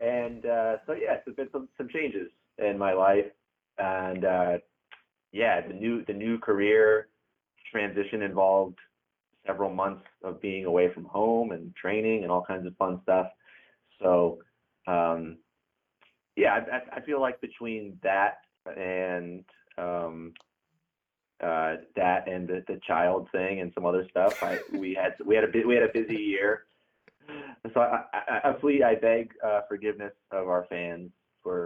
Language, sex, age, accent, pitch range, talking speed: English, male, 30-49, American, 90-105 Hz, 155 wpm